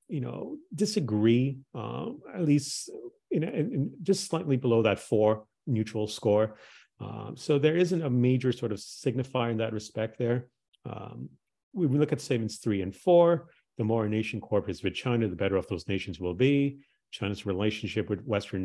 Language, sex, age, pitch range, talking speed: English, male, 40-59, 105-140 Hz, 175 wpm